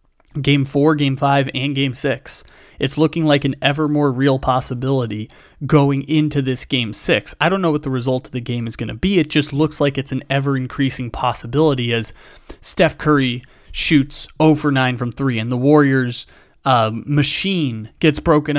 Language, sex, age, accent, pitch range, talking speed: English, male, 30-49, American, 125-150 Hz, 185 wpm